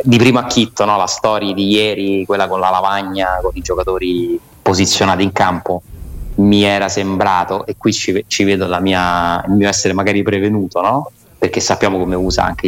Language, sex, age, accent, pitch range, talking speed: Italian, male, 30-49, native, 90-105 Hz, 180 wpm